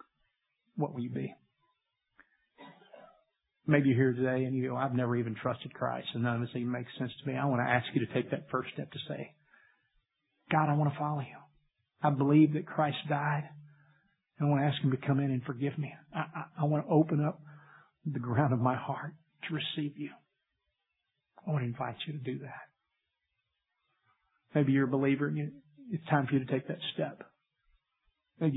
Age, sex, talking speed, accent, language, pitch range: 50-69, male, 205 wpm, American, English, 135-160 Hz